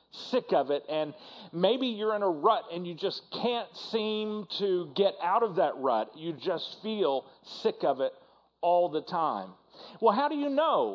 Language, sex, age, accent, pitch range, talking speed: English, male, 40-59, American, 155-215 Hz, 185 wpm